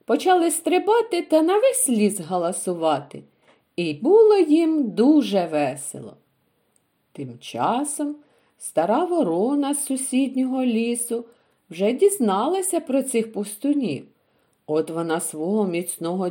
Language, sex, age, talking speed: Ukrainian, female, 50-69, 105 wpm